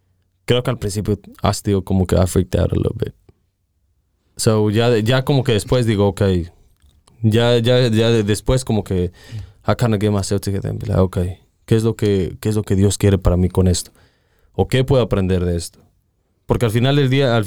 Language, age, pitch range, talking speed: Spanish, 20-39, 90-120 Hz, 205 wpm